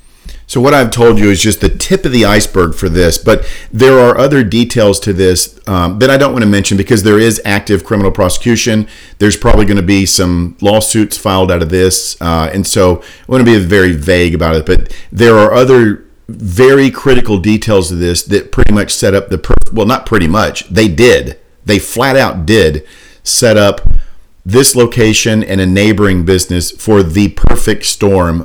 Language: English